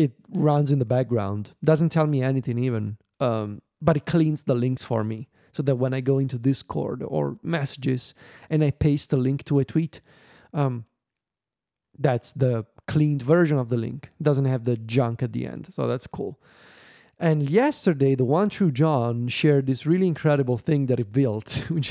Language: English